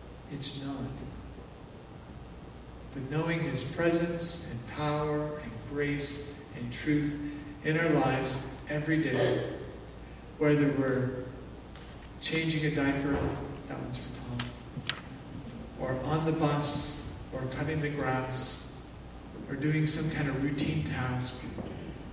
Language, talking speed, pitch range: English, 110 wpm, 130-150 Hz